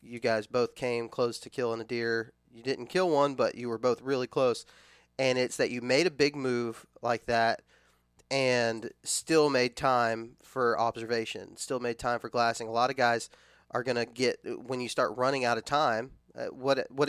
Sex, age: male, 20-39